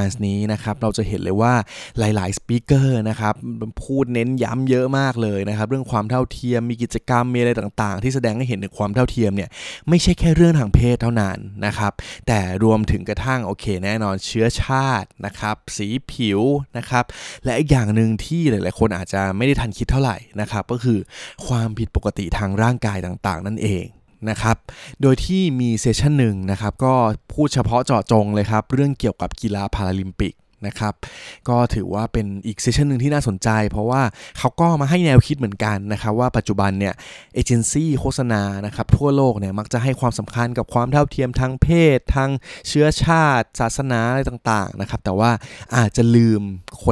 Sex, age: male, 20-39